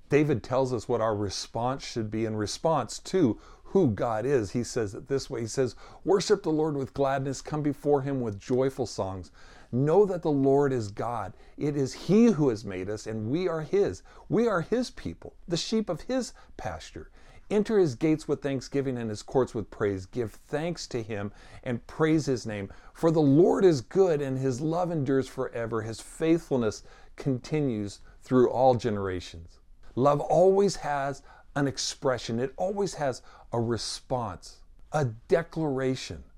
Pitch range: 110-155 Hz